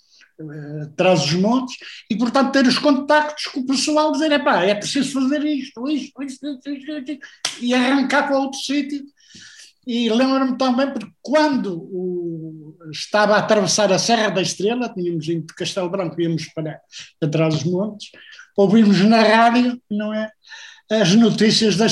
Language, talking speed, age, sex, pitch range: Portuguese, 165 wpm, 60-79, male, 180-240 Hz